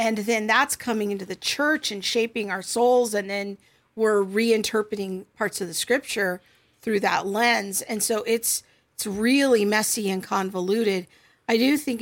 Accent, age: American, 50-69